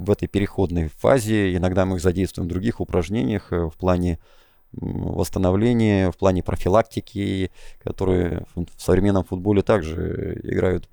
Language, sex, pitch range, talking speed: Russian, male, 90-100 Hz, 125 wpm